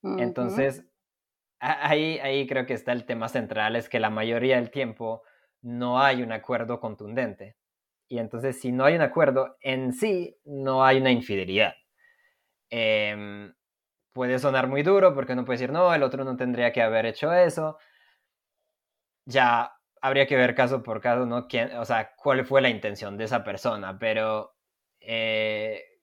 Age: 20-39